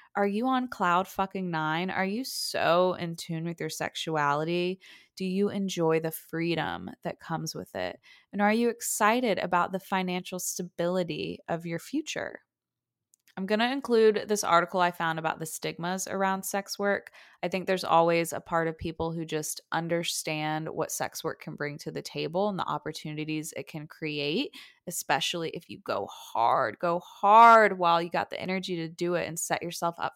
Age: 20-39